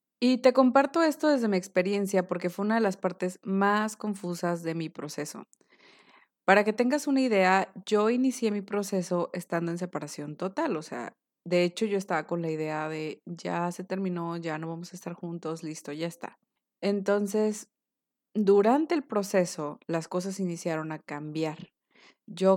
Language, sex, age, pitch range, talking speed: Spanish, female, 20-39, 170-215 Hz, 170 wpm